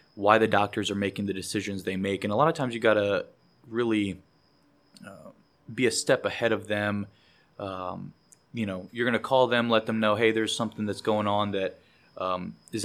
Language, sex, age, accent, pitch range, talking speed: English, male, 20-39, American, 100-115 Hz, 210 wpm